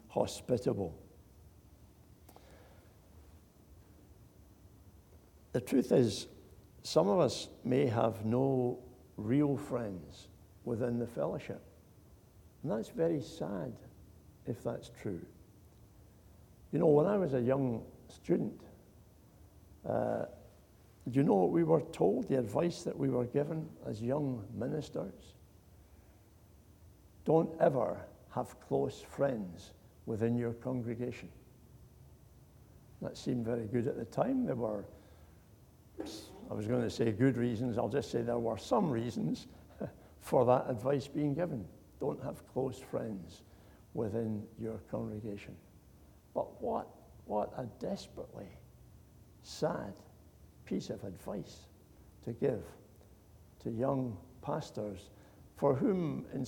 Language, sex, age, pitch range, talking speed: English, male, 60-79, 95-125 Hz, 115 wpm